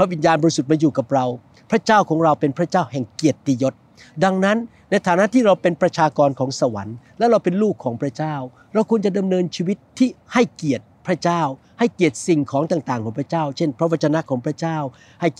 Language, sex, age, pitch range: Thai, male, 60-79, 140-205 Hz